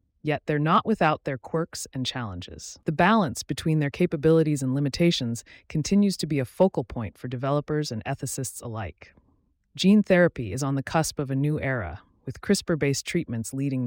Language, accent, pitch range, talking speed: English, American, 115-160 Hz, 175 wpm